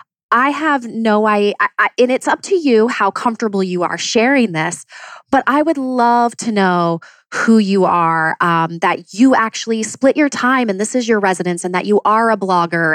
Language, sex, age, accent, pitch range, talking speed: English, female, 20-39, American, 180-240 Hz, 195 wpm